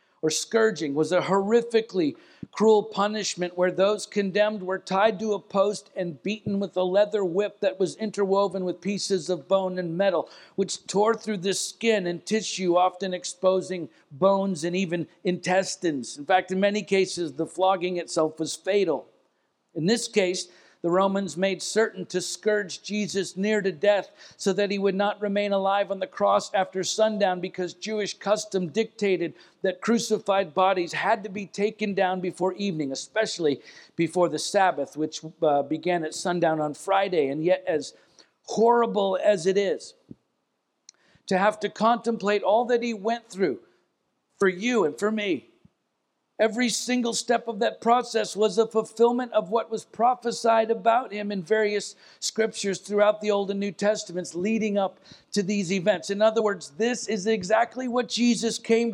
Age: 50-69